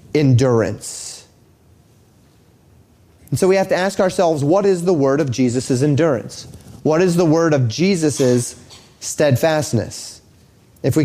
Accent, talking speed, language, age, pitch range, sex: American, 130 wpm, English, 30-49, 130-180 Hz, male